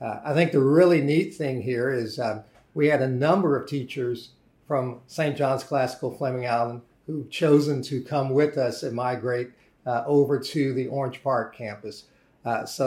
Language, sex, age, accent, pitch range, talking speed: English, male, 50-69, American, 125-150 Hz, 180 wpm